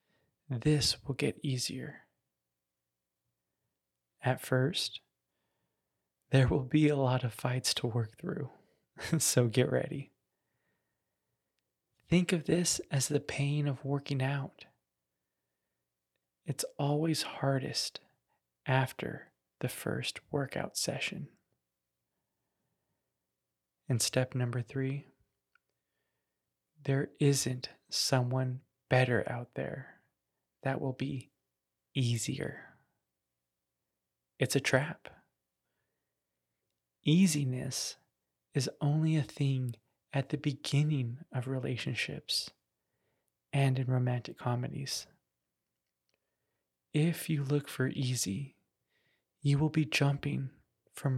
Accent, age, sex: American, 20-39, male